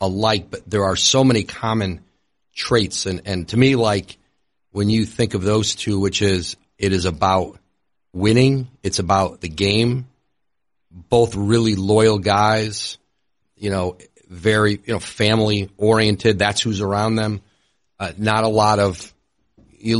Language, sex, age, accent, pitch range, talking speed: English, male, 40-59, American, 95-115 Hz, 150 wpm